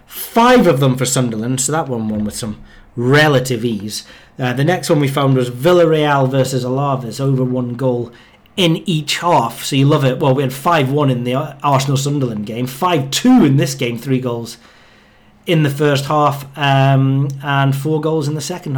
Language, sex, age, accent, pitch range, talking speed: English, male, 30-49, British, 125-155 Hz, 190 wpm